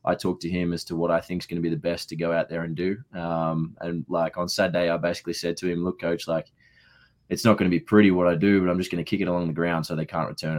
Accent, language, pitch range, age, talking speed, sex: Australian, English, 80-90 Hz, 20-39, 325 wpm, male